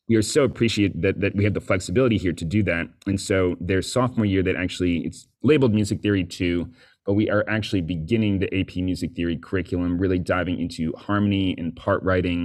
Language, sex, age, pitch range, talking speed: English, male, 30-49, 90-105 Hz, 205 wpm